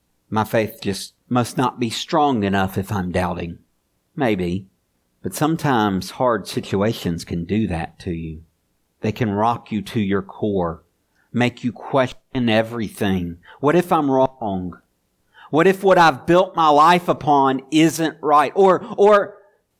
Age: 50-69